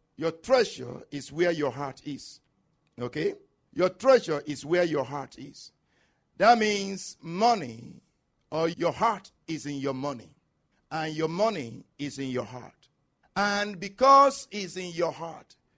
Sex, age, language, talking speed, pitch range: male, 50-69, English, 145 wpm, 180-245 Hz